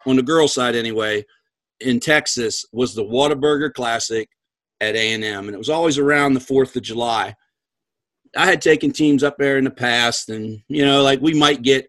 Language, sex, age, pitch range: English, male, 40-59, 115-135 Hz